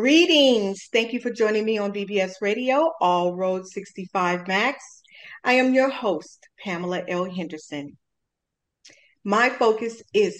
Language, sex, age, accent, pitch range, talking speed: English, female, 40-59, American, 180-250 Hz, 135 wpm